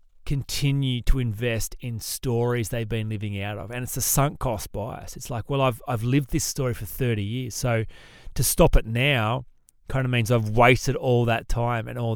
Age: 30-49